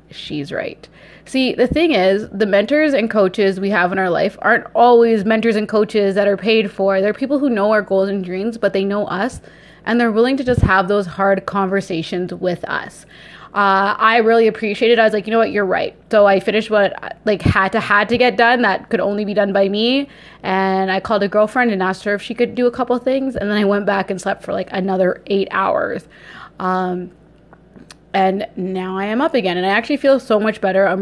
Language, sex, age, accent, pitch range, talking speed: English, female, 20-39, American, 190-220 Hz, 230 wpm